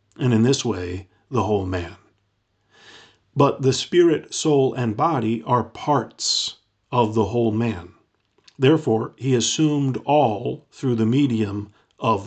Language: English